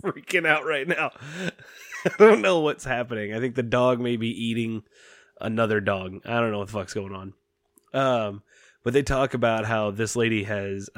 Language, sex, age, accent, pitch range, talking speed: English, male, 20-39, American, 105-125 Hz, 190 wpm